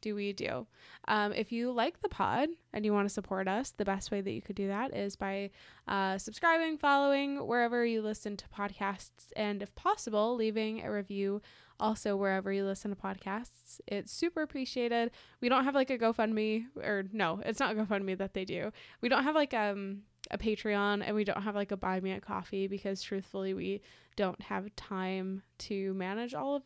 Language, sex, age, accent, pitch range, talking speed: English, female, 20-39, American, 195-235 Hz, 200 wpm